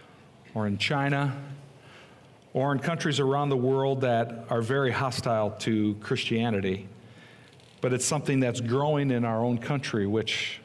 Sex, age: male, 50-69